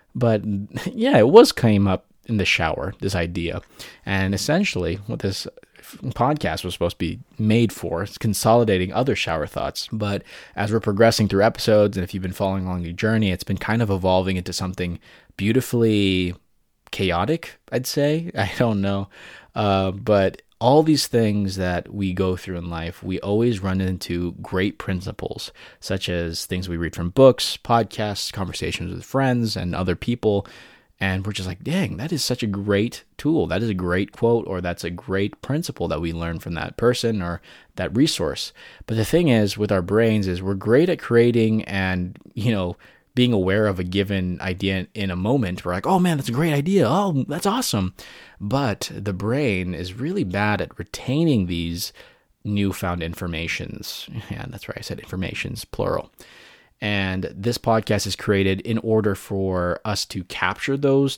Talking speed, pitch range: 180 wpm, 95-120 Hz